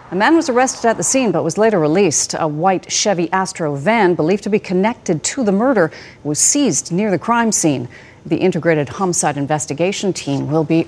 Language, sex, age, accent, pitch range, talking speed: English, female, 40-59, American, 160-235 Hz, 200 wpm